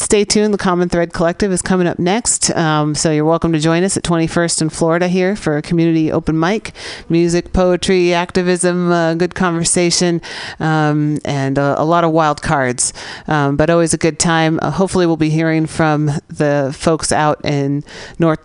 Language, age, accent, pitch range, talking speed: English, 40-59, American, 150-180 Hz, 190 wpm